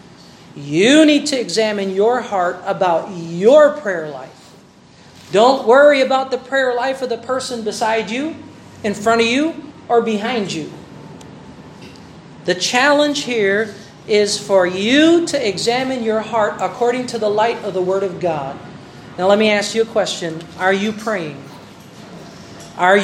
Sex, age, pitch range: male, 40-59, 180-240 Hz